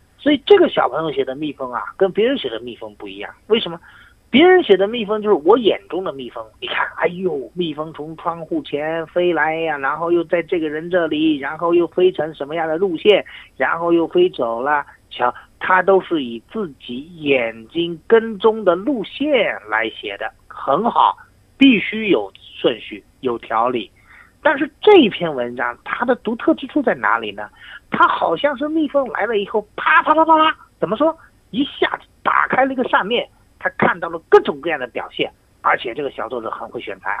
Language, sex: Chinese, male